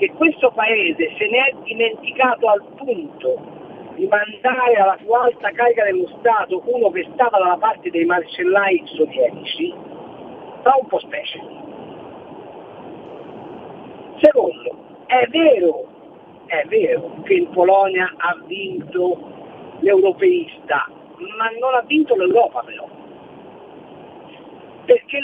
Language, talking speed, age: Italian, 110 wpm, 50-69